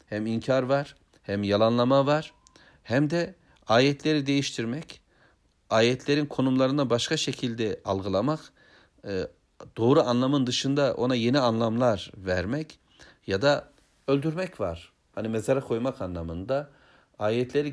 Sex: male